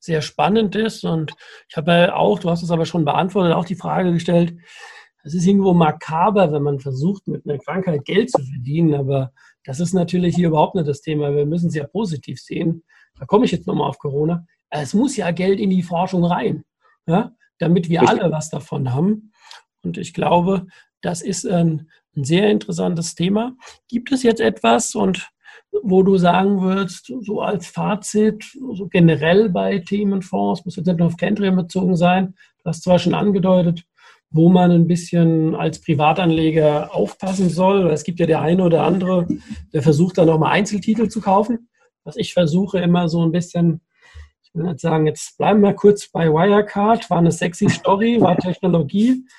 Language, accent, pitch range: German, German, 165-200 Hz